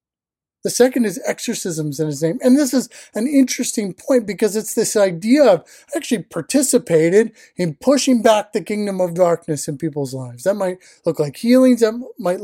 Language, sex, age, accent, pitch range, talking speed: English, male, 30-49, American, 165-230 Hz, 180 wpm